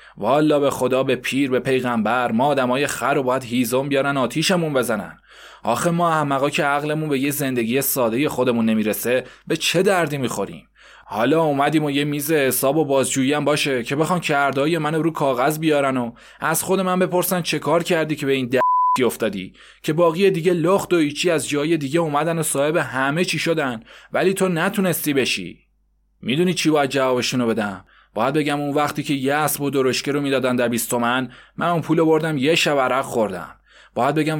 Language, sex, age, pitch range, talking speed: Persian, male, 20-39, 135-160 Hz, 190 wpm